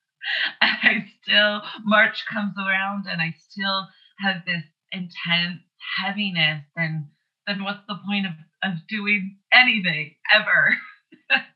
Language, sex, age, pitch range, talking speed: English, female, 20-39, 155-195 Hz, 115 wpm